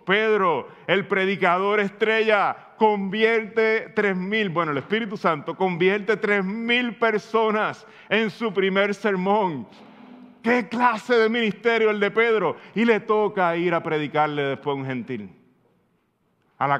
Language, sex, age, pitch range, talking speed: Spanish, male, 30-49, 155-215 Hz, 135 wpm